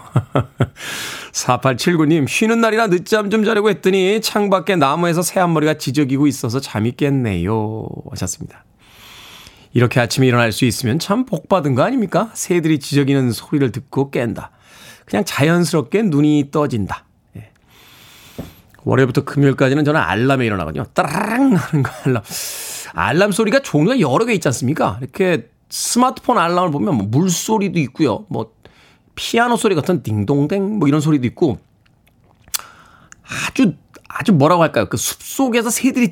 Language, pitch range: Korean, 135-220 Hz